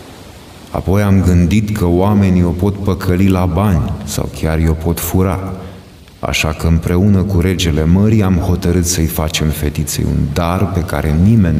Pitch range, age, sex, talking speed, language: 75-95 Hz, 30-49, male, 160 wpm, Romanian